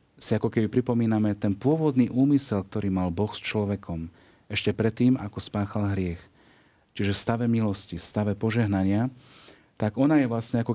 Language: Slovak